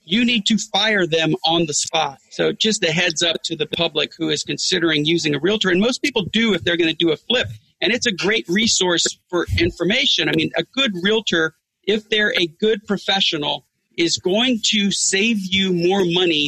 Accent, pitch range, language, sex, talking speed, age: American, 160-195 Hz, English, male, 210 wpm, 40-59